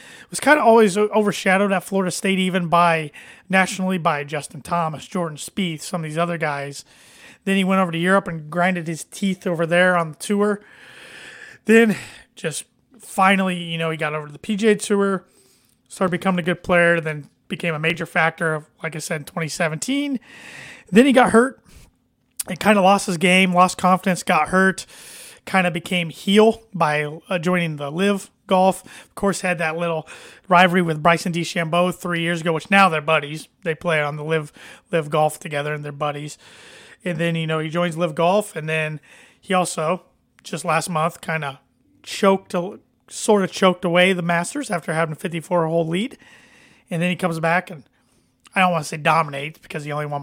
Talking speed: 190 wpm